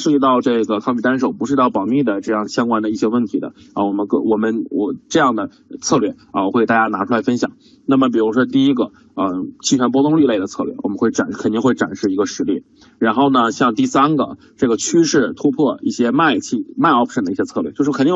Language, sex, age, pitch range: Chinese, male, 20-39, 110-140 Hz